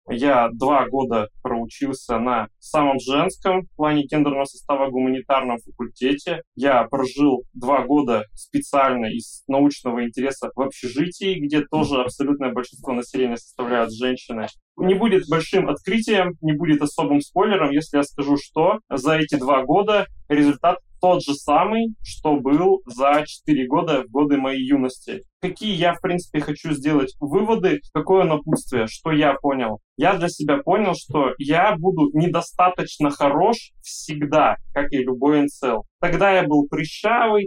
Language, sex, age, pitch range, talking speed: Russian, male, 20-39, 135-175 Hz, 140 wpm